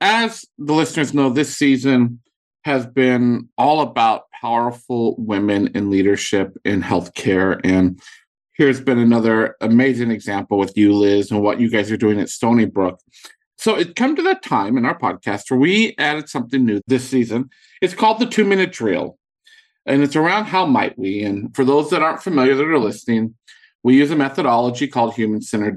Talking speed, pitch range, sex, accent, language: 175 wpm, 115-175 Hz, male, American, English